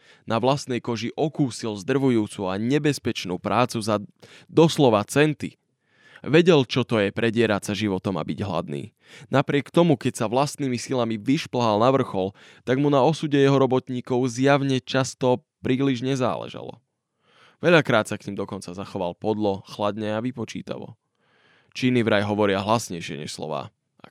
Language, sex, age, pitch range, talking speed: Slovak, male, 20-39, 105-130 Hz, 140 wpm